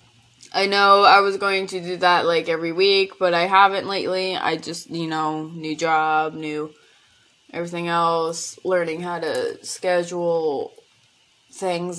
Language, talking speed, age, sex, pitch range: English, 145 wpm, 20-39, female, 175-235 Hz